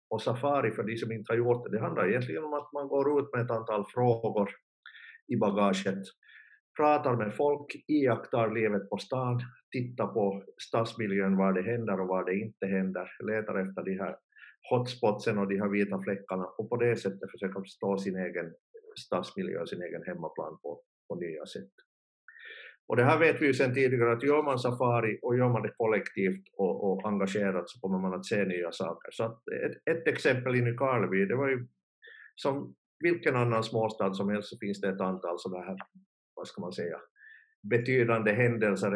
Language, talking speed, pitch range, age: Swedish, 190 wpm, 100-130 Hz, 50-69